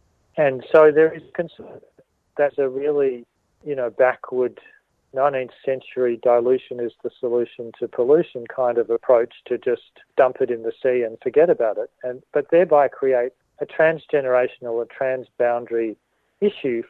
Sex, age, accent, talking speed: male, 40-59, Australian, 150 wpm